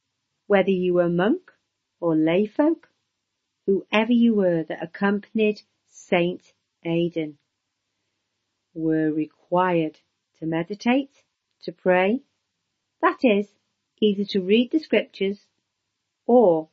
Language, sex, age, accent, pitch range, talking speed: English, female, 50-69, British, 160-205 Hz, 100 wpm